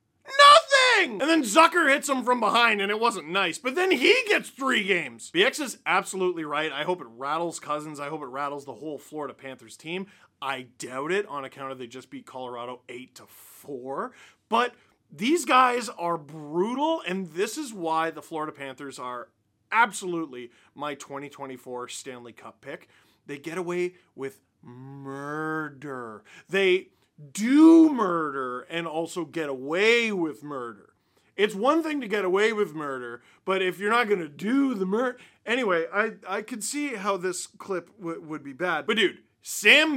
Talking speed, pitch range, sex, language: 165 wpm, 150-215 Hz, male, English